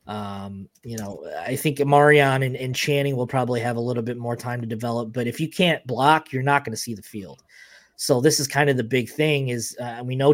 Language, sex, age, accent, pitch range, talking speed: English, male, 20-39, American, 120-150 Hz, 250 wpm